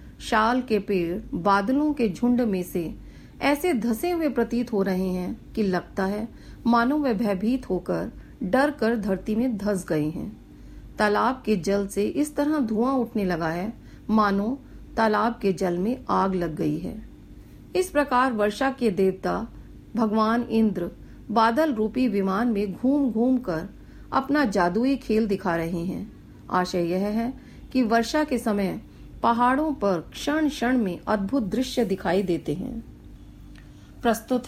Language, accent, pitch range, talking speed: Hindi, native, 195-250 Hz, 145 wpm